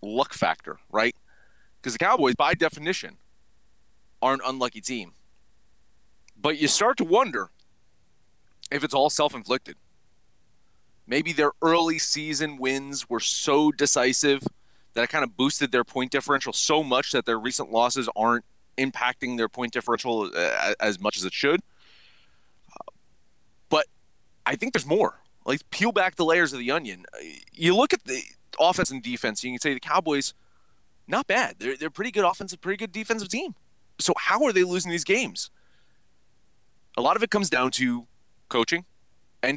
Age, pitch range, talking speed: 30-49, 115-165 Hz, 165 wpm